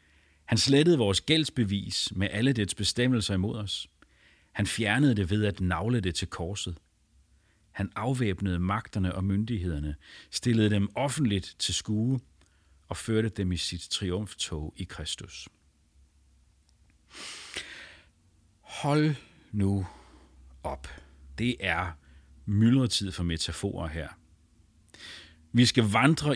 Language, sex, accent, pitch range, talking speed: English, male, Danish, 85-120 Hz, 110 wpm